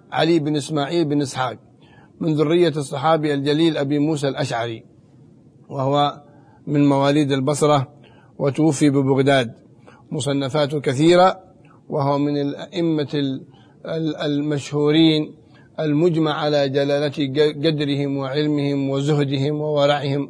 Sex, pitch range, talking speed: male, 140-175 Hz, 90 wpm